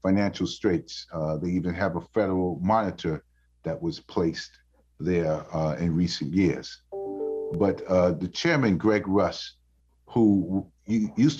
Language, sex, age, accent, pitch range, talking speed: English, male, 40-59, American, 85-105 Hz, 130 wpm